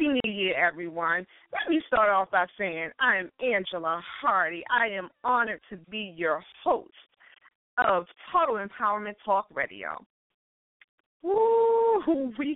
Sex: female